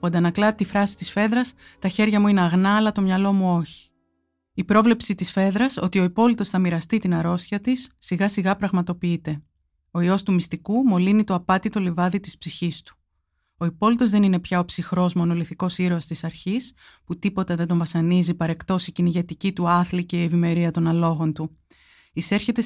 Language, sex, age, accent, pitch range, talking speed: Greek, female, 20-39, native, 165-205 Hz, 185 wpm